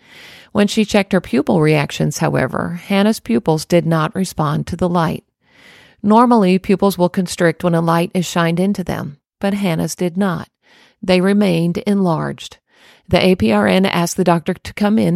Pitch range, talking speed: 170-205 Hz, 160 wpm